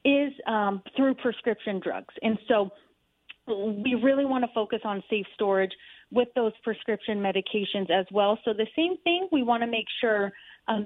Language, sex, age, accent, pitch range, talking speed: English, female, 30-49, American, 205-260 Hz, 170 wpm